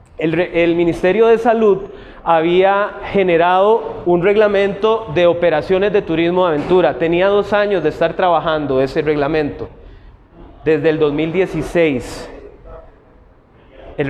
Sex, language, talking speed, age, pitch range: male, Spanish, 115 wpm, 30-49, 160-205 Hz